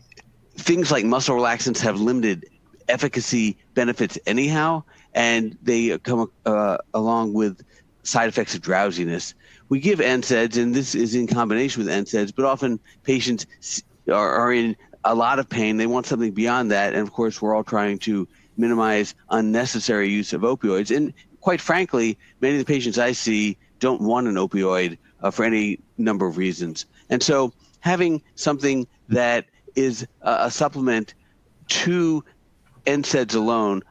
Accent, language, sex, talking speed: American, English, male, 150 wpm